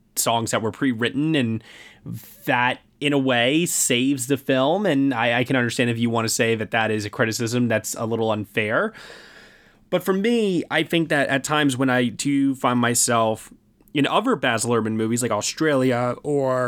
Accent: American